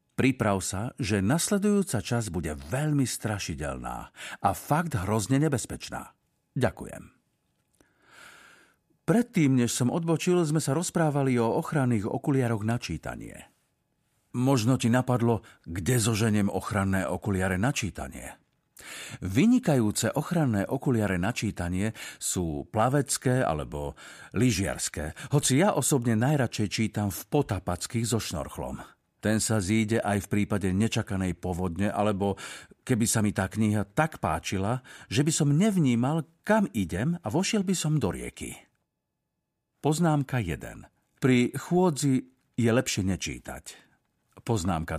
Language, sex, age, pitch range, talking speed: Slovak, male, 50-69, 100-140 Hz, 115 wpm